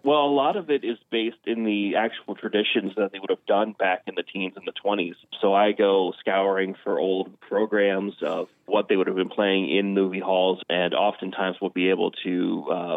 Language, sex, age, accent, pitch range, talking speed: English, male, 30-49, American, 95-110 Hz, 220 wpm